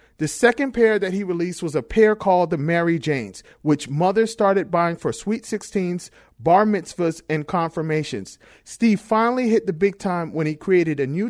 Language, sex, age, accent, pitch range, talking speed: English, male, 40-59, American, 160-205 Hz, 185 wpm